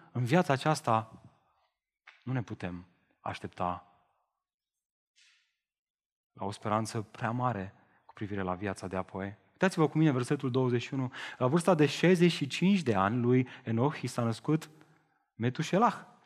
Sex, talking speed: male, 130 wpm